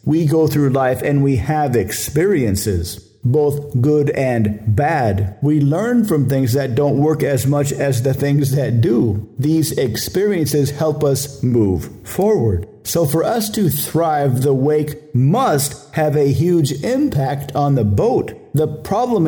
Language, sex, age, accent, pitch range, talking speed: English, male, 50-69, American, 125-155 Hz, 155 wpm